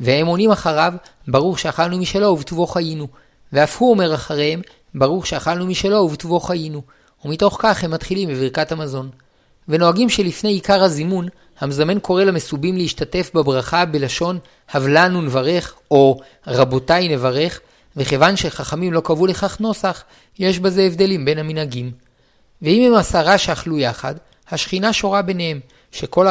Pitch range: 145-185 Hz